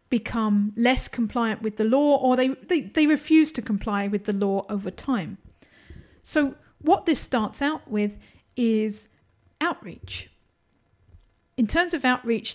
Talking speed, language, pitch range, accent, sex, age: 145 wpm, English, 205-250 Hz, British, female, 40-59